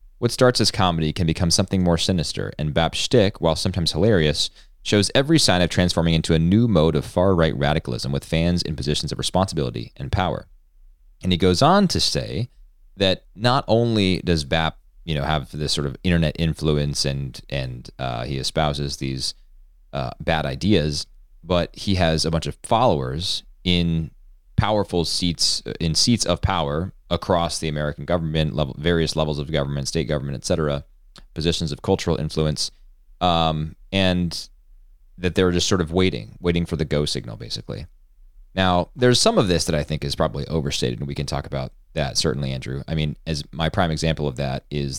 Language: English